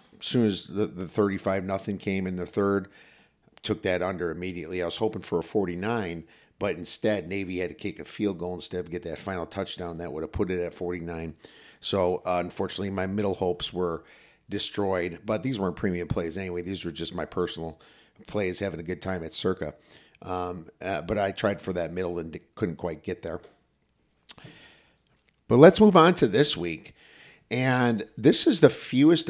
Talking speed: 190 wpm